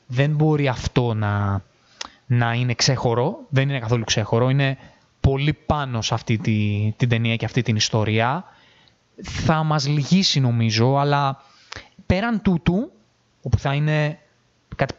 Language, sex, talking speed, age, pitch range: Greek, male, 135 wpm, 20-39, 115-150 Hz